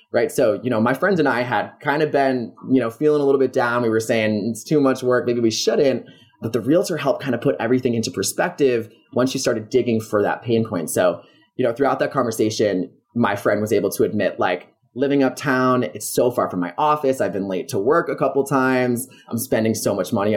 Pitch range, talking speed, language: 110-140 Hz, 240 wpm, English